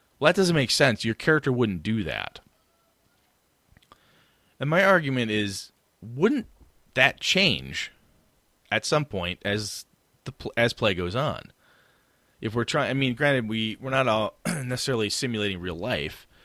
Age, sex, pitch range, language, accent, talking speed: 30-49, male, 90-130 Hz, English, American, 145 wpm